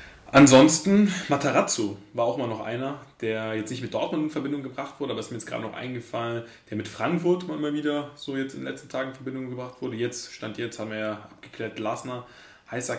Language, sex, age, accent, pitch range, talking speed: German, male, 20-39, German, 110-130 Hz, 215 wpm